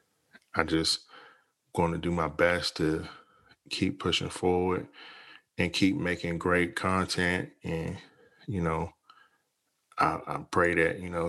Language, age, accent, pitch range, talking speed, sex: English, 10-29, American, 80-90 Hz, 135 wpm, male